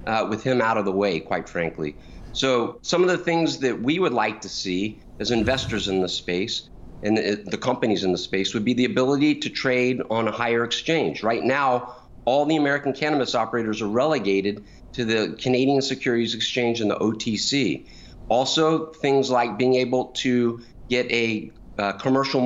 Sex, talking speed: male, 185 wpm